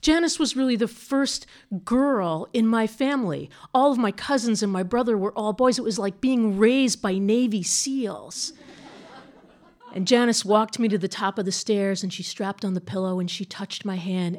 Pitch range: 220-315 Hz